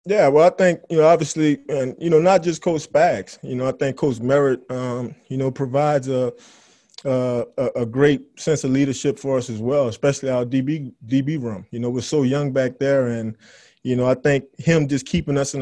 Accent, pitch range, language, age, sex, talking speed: American, 125-150 Hz, English, 20-39, male, 225 wpm